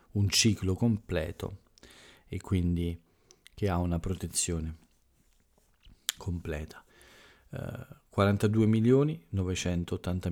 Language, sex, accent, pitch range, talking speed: Italian, male, native, 85-105 Hz, 75 wpm